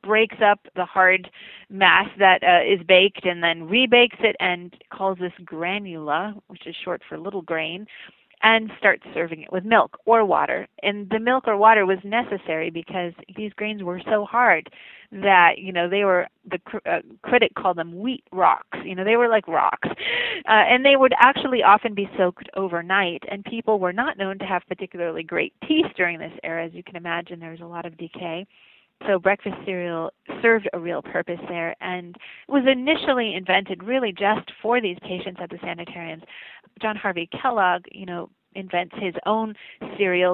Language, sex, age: English, female, 30-49